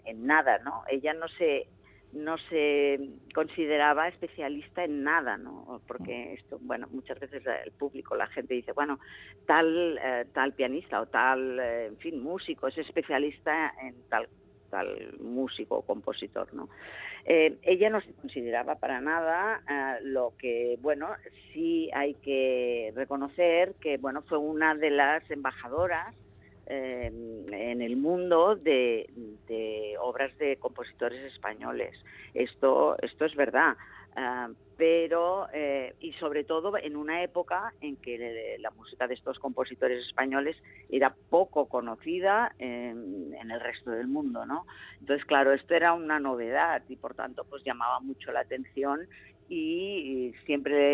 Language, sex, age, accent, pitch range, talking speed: Spanish, female, 40-59, Spanish, 125-155 Hz, 145 wpm